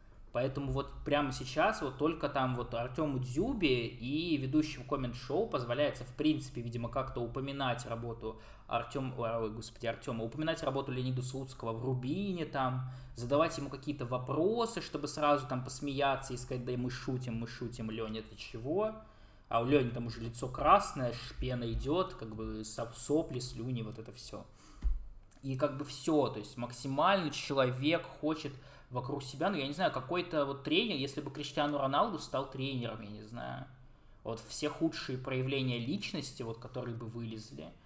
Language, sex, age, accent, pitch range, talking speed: Russian, male, 20-39, native, 120-140 Hz, 160 wpm